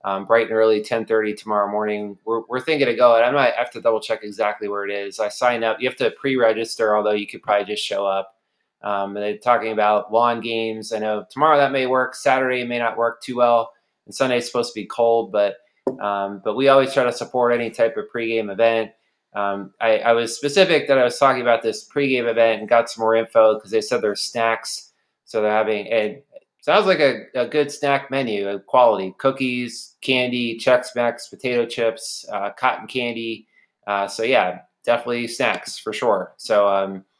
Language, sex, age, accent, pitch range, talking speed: English, male, 20-39, American, 110-125 Hz, 205 wpm